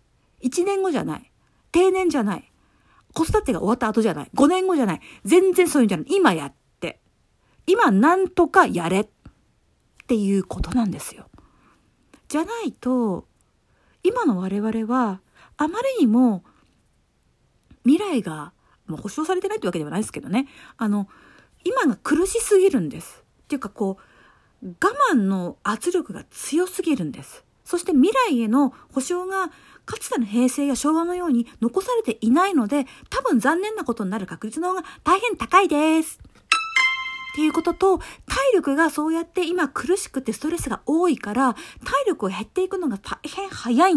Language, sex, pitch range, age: Japanese, female, 240-365 Hz, 50-69